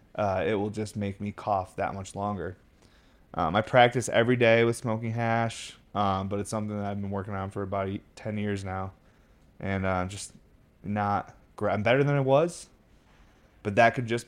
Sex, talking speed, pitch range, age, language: male, 200 wpm, 100-120 Hz, 20-39, English